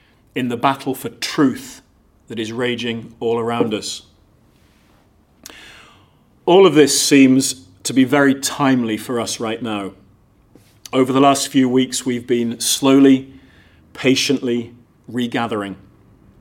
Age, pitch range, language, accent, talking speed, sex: 40-59, 110-135 Hz, English, British, 120 wpm, male